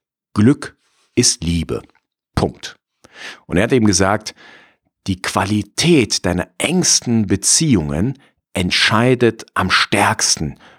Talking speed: 95 wpm